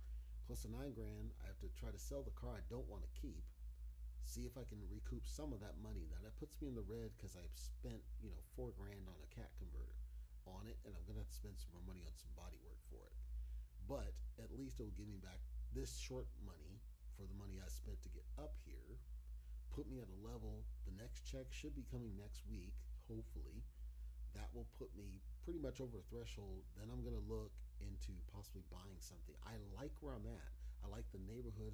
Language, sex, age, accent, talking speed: English, male, 40-59, American, 230 wpm